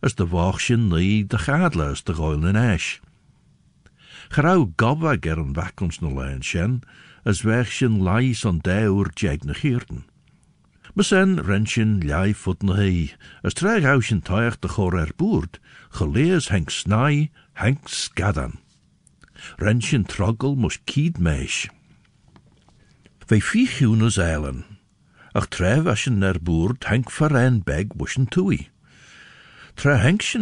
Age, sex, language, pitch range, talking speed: 60-79, male, English, 85-125 Hz, 110 wpm